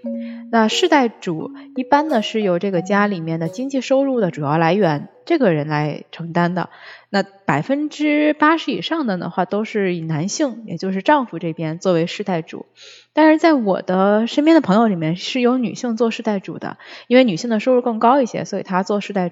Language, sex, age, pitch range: Chinese, female, 20-39, 180-270 Hz